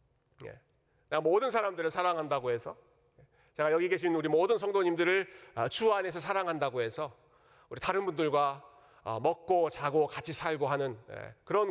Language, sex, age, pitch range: Korean, male, 40-59, 130-180 Hz